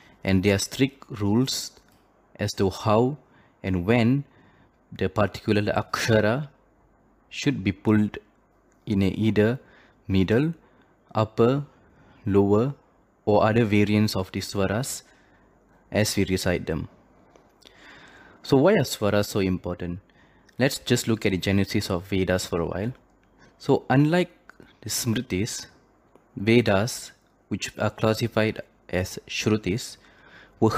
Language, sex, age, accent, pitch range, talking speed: Tamil, male, 20-39, native, 95-120 Hz, 115 wpm